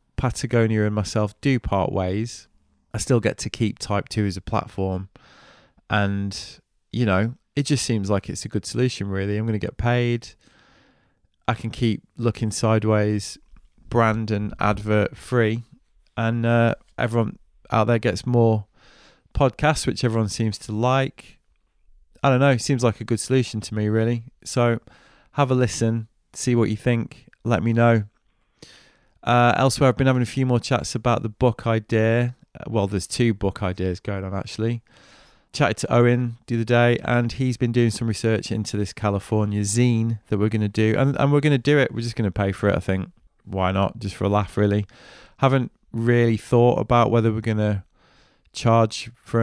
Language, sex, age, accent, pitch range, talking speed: English, male, 20-39, British, 105-120 Hz, 185 wpm